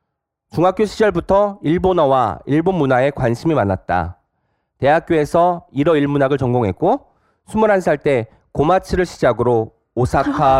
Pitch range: 125-190 Hz